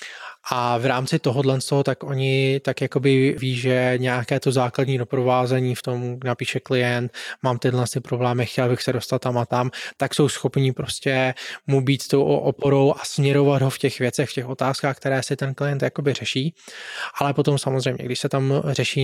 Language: Czech